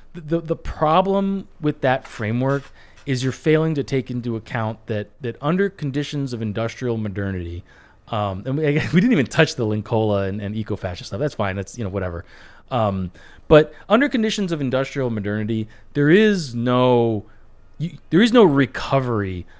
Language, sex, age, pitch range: English, male, 30-49, 110-150 Hz